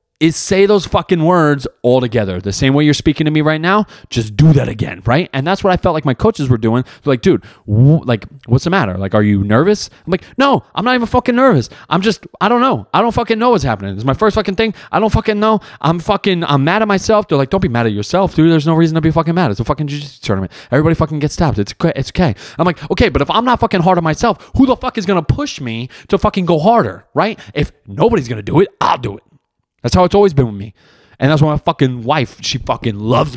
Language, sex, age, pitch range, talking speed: English, male, 20-39, 125-195 Hz, 275 wpm